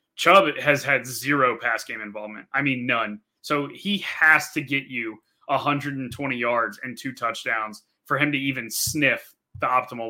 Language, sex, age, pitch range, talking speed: English, male, 20-39, 120-140 Hz, 165 wpm